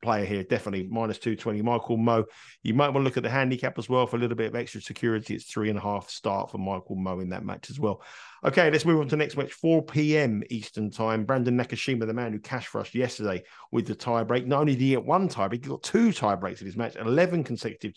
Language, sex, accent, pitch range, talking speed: English, male, British, 110-135 Hz, 265 wpm